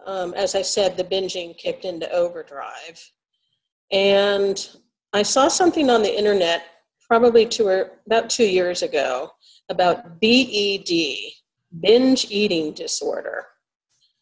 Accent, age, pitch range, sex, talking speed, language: American, 40-59, 180-245 Hz, female, 110 wpm, English